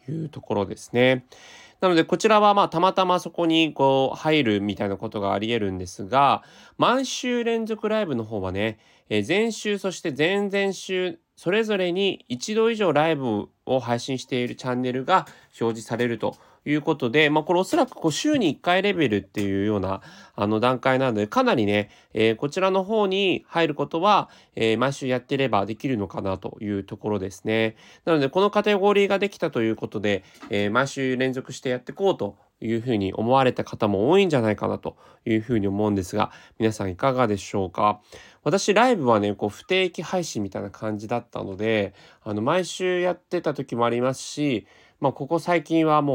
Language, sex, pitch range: Japanese, male, 105-170 Hz